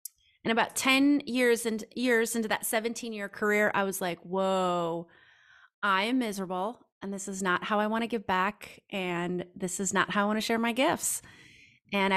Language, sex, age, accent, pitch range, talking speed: English, female, 30-49, American, 190-230 Hz, 195 wpm